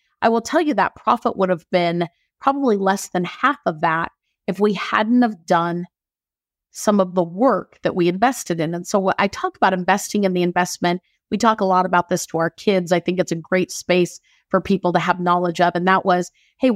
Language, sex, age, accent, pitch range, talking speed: English, female, 30-49, American, 175-210 Hz, 220 wpm